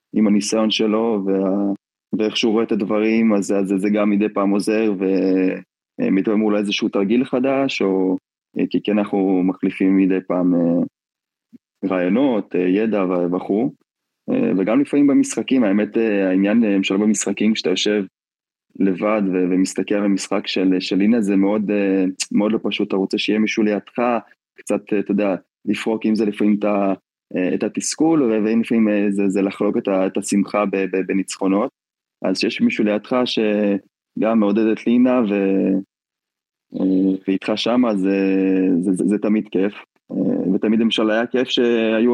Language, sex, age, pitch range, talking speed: Hebrew, male, 20-39, 95-110 Hz, 140 wpm